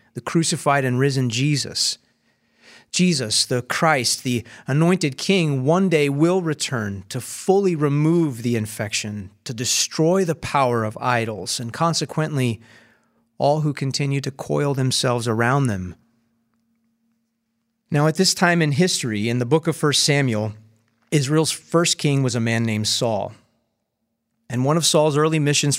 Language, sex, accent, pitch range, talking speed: English, male, American, 115-155 Hz, 145 wpm